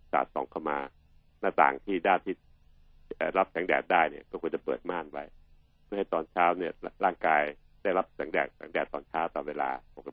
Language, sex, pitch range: Thai, male, 75-80 Hz